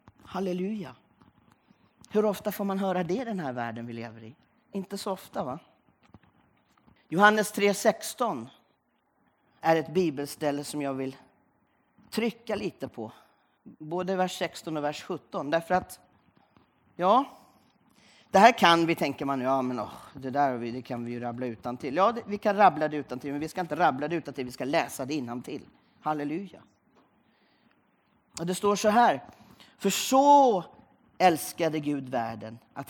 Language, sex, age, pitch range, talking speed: Swedish, male, 40-59, 140-200 Hz, 155 wpm